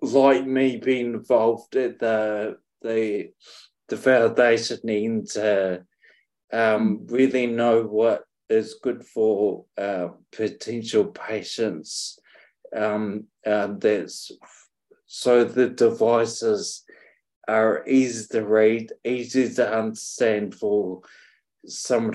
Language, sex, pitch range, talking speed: English, male, 110-125 Hz, 100 wpm